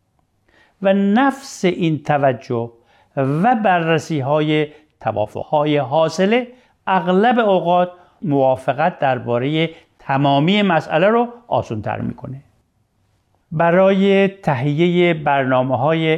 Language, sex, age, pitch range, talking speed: Persian, male, 50-69, 125-180 Hz, 85 wpm